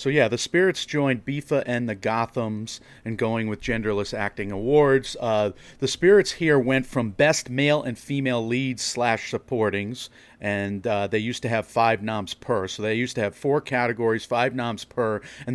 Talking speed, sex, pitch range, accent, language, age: 185 wpm, male, 110-135 Hz, American, English, 40-59